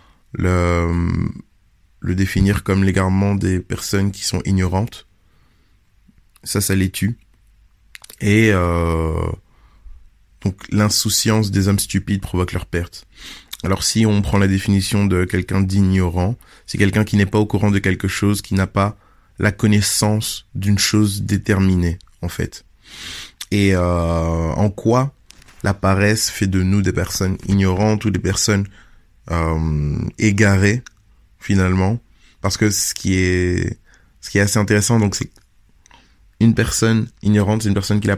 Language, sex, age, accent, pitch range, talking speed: French, male, 20-39, French, 90-105 Hz, 145 wpm